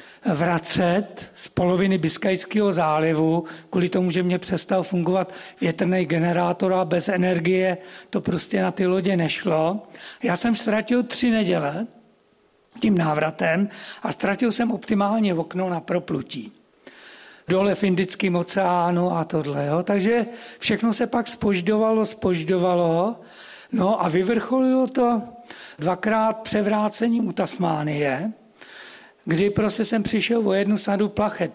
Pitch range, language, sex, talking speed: 180-220 Hz, Czech, male, 125 wpm